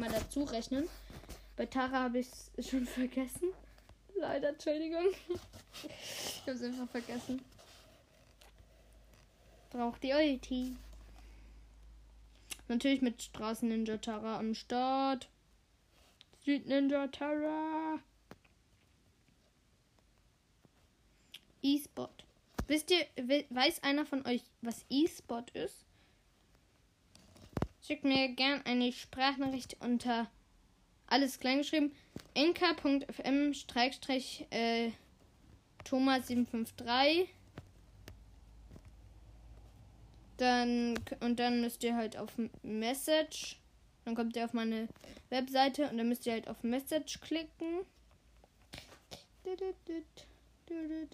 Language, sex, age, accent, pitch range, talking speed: German, female, 10-29, German, 235-290 Hz, 85 wpm